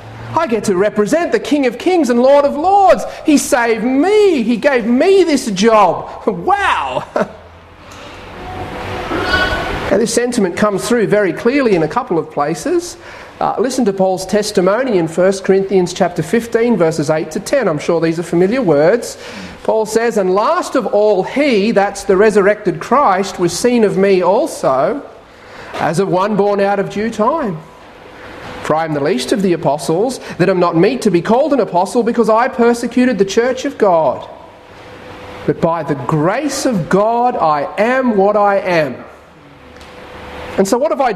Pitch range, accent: 185-255 Hz, Australian